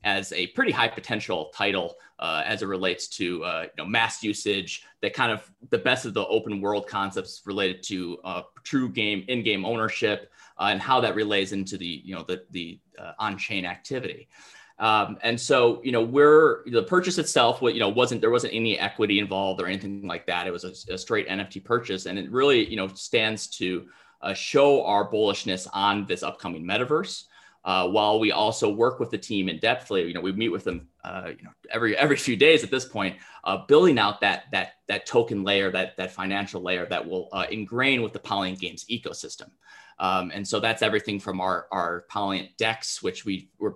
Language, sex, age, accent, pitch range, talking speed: English, male, 30-49, American, 95-110 Hz, 205 wpm